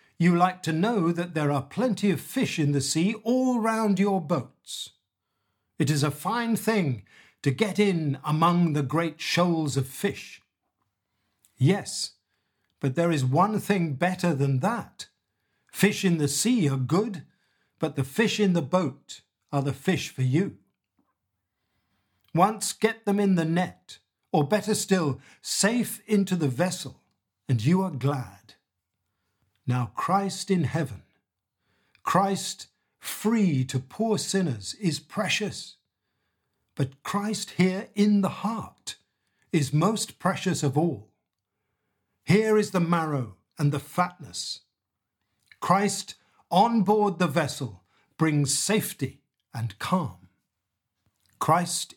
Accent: British